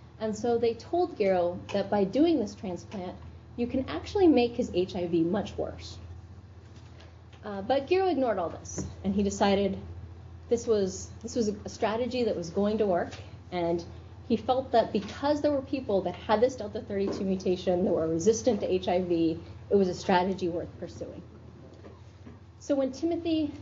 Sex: female